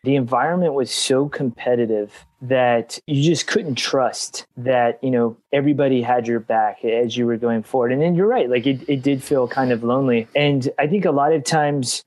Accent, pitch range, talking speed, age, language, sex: American, 125-150 Hz, 205 wpm, 20-39, English, male